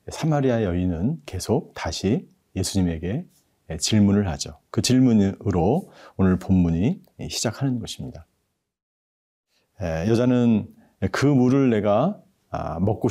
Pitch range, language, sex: 90-130 Hz, Korean, male